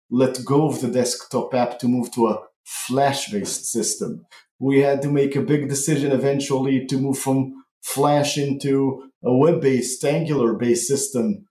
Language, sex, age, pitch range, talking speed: English, male, 40-59, 130-155 Hz, 150 wpm